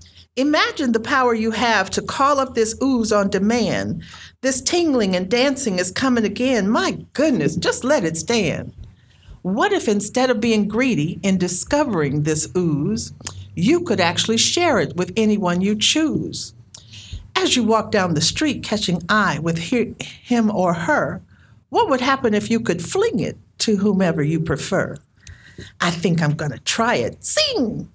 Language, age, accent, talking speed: English, 50-69, American, 165 wpm